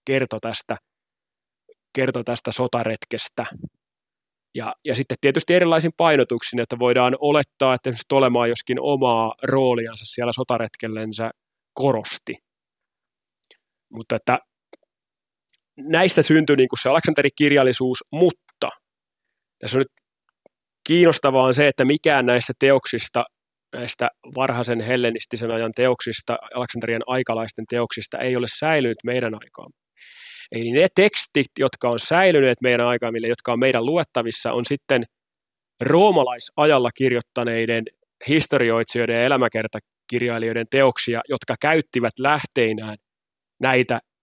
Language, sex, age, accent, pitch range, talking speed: Finnish, male, 30-49, native, 115-135 Hz, 105 wpm